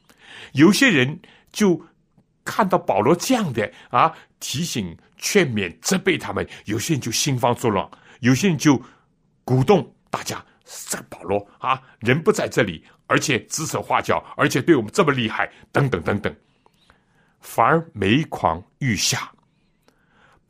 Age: 60-79